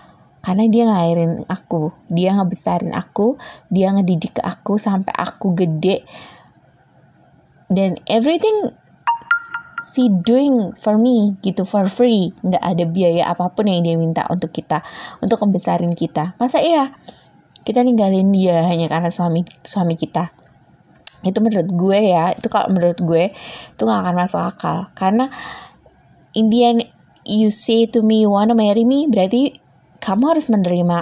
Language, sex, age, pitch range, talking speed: Indonesian, female, 20-39, 170-225 Hz, 140 wpm